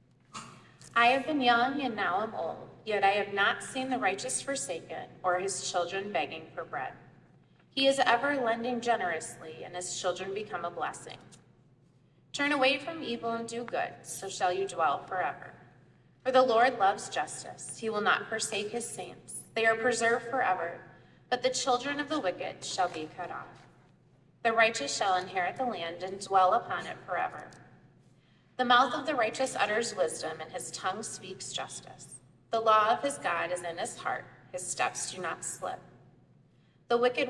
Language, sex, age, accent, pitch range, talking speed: English, female, 20-39, American, 185-250 Hz, 175 wpm